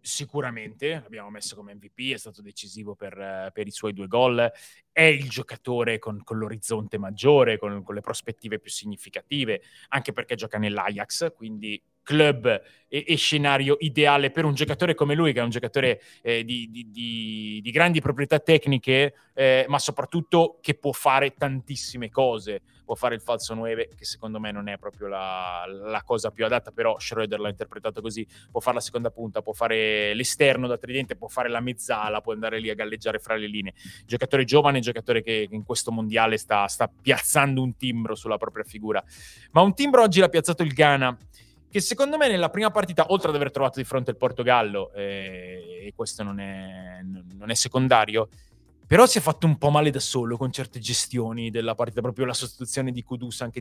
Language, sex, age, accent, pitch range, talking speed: Italian, male, 20-39, native, 110-150 Hz, 190 wpm